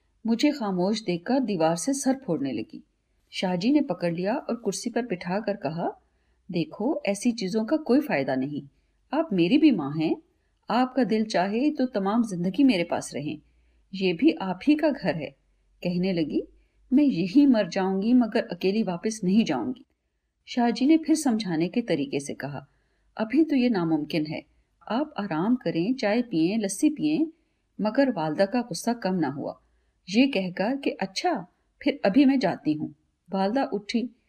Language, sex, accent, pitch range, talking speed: Hindi, female, native, 185-275 Hz, 165 wpm